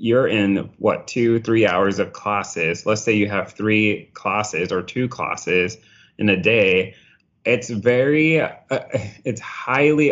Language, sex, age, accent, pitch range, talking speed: English, male, 20-39, American, 95-110 Hz, 150 wpm